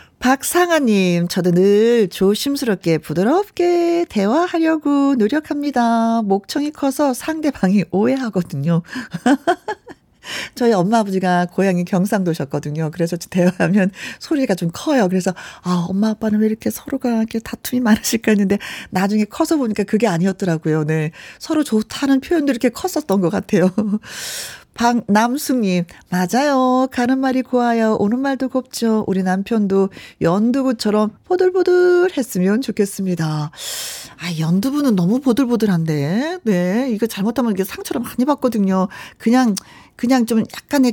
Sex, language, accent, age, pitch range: female, Korean, native, 40-59, 185-260 Hz